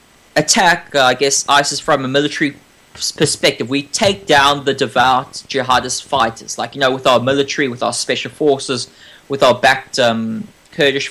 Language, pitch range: English, 130-175 Hz